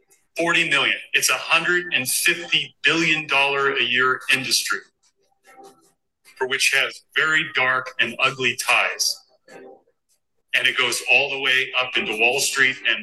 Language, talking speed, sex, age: English, 130 wpm, male, 40-59